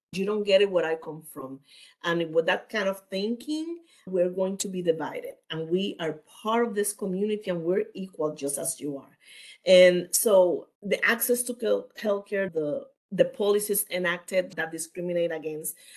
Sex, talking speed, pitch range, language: female, 175 wpm, 170-215 Hz, English